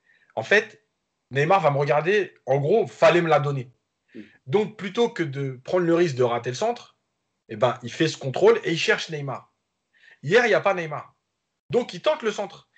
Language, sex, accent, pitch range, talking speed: French, male, French, 125-185 Hz, 205 wpm